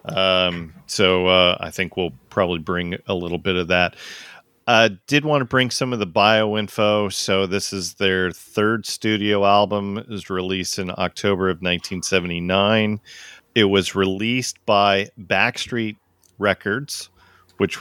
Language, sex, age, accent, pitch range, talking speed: English, male, 40-59, American, 90-105 Hz, 150 wpm